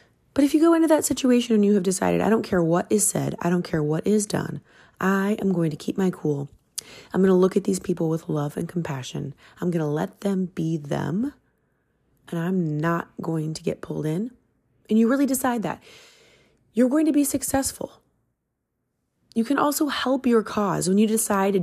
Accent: American